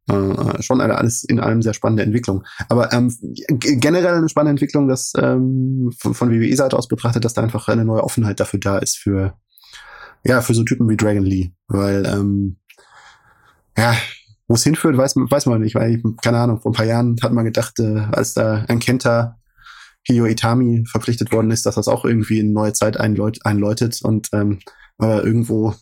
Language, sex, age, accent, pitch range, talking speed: German, male, 20-39, German, 105-120 Hz, 190 wpm